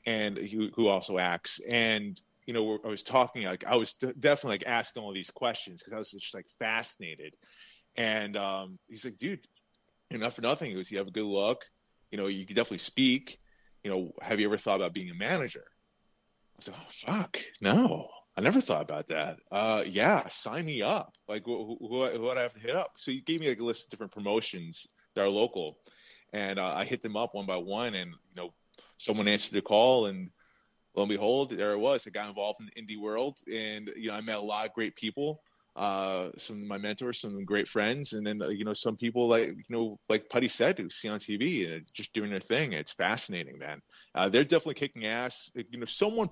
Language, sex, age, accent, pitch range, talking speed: English, male, 30-49, American, 100-120 Hz, 225 wpm